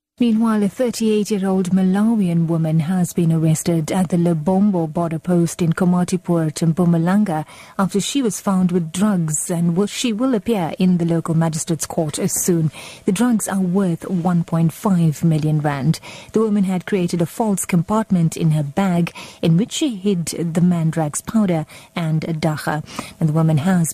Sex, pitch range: female, 165-205 Hz